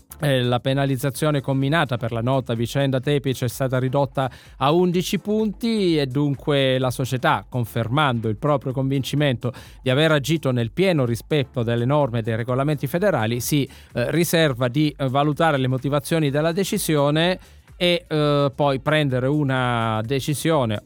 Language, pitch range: Italian, 125-155 Hz